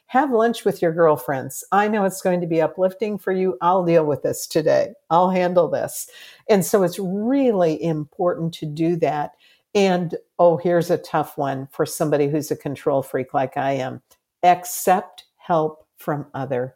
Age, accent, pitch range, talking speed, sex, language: 50-69, American, 155-190 Hz, 175 wpm, female, English